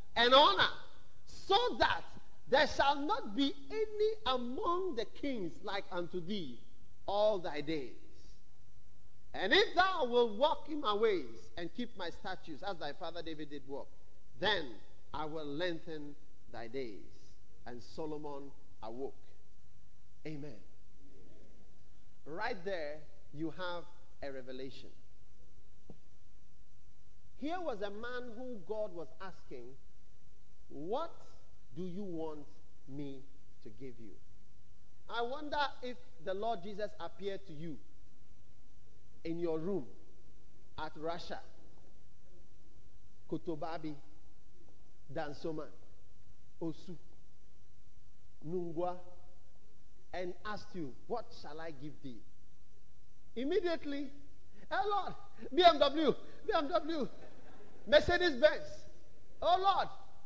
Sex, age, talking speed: male, 40-59, 105 wpm